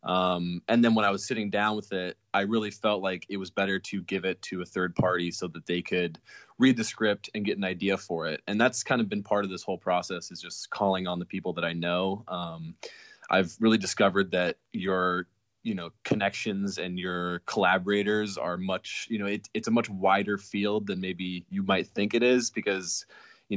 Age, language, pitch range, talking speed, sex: 20-39, English, 90-110 Hz, 220 wpm, male